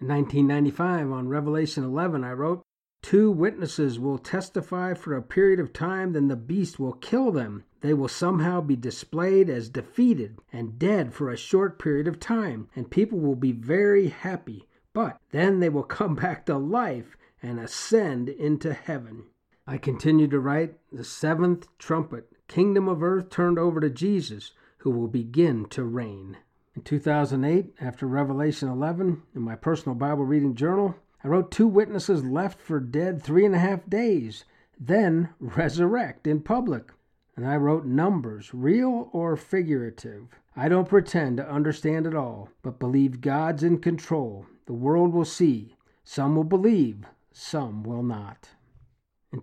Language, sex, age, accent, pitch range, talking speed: English, male, 50-69, American, 130-175 Hz, 160 wpm